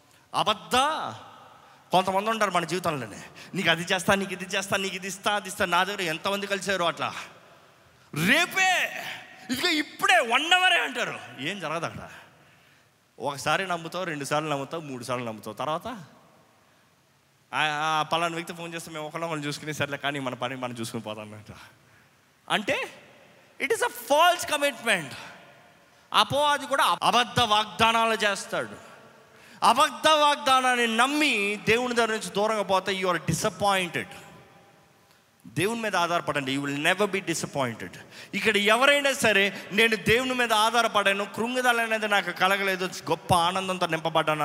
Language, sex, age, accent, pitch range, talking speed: Telugu, male, 20-39, native, 150-220 Hz, 125 wpm